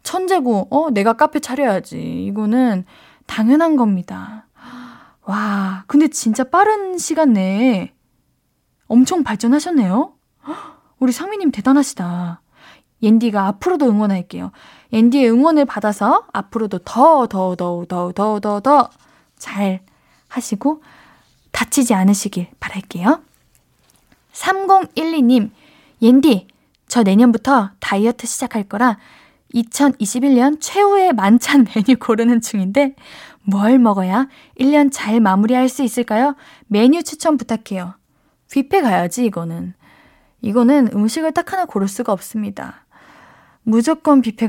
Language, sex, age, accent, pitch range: Korean, female, 10-29, native, 205-285 Hz